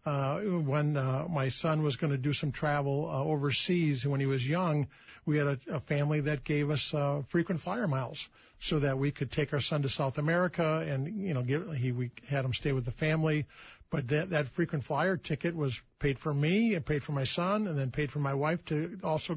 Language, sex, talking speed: English, male, 225 wpm